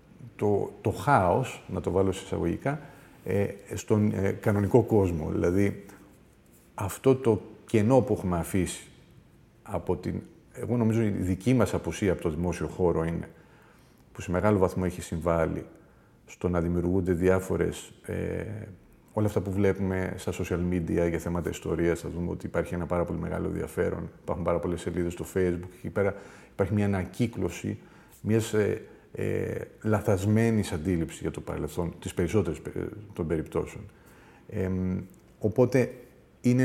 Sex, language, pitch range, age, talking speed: male, Greek, 90-110 Hz, 40-59, 150 wpm